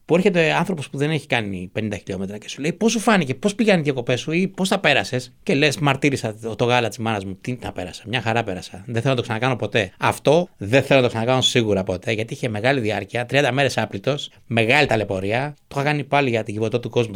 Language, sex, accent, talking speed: Greek, male, native, 245 wpm